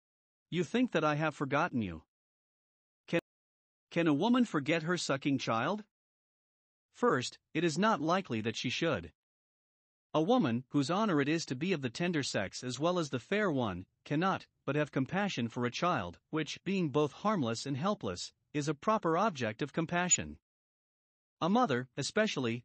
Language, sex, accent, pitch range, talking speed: English, male, American, 125-180 Hz, 165 wpm